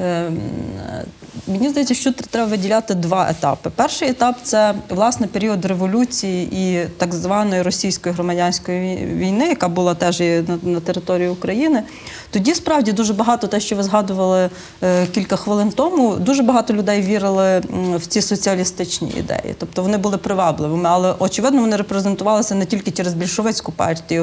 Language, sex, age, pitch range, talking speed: Ukrainian, female, 30-49, 185-220 Hz, 145 wpm